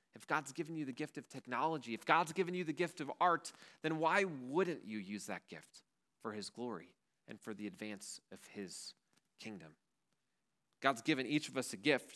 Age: 30-49